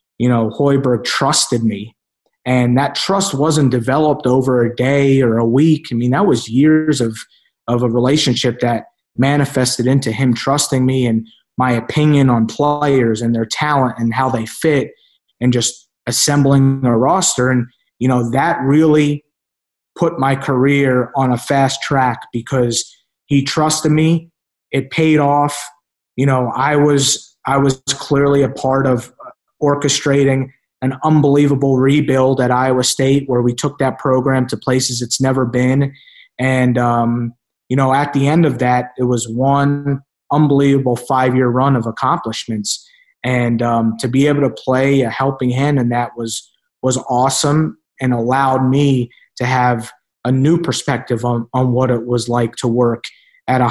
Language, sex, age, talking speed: English, male, 30-49, 160 wpm